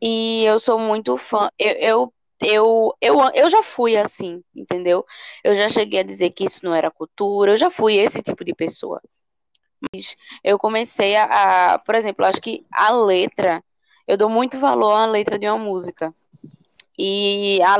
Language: Portuguese